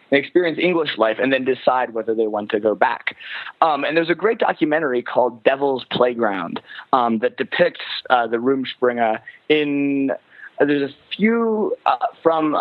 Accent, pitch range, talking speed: American, 120-170 Hz, 165 wpm